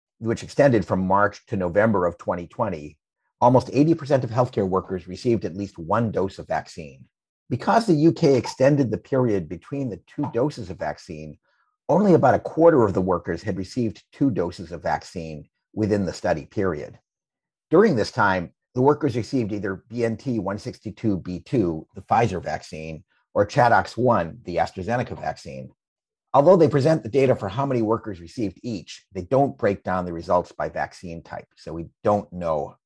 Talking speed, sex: 165 wpm, male